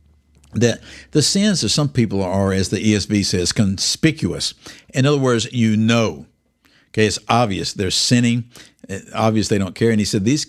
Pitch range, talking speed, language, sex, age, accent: 100-145 Hz, 175 wpm, English, male, 60-79, American